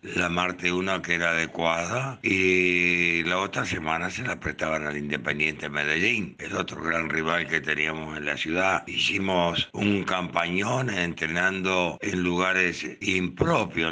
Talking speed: 140 wpm